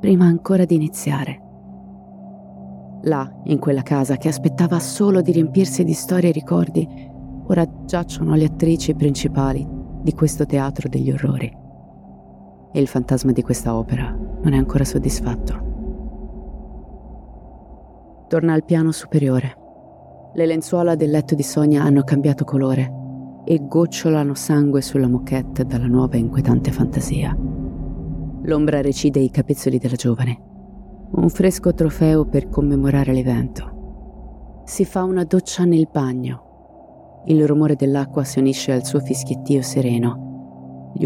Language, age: Italian, 30-49